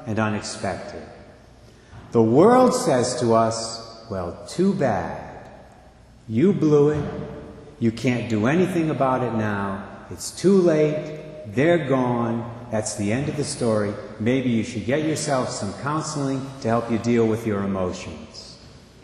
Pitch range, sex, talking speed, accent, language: 115-165 Hz, male, 140 wpm, American, English